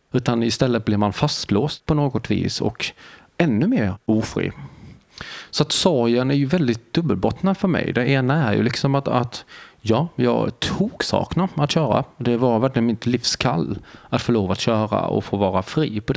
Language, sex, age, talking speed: Swedish, male, 30-49, 180 wpm